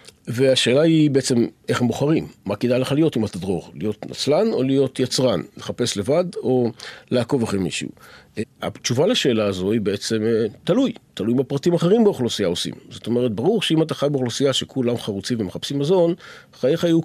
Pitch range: 115-155 Hz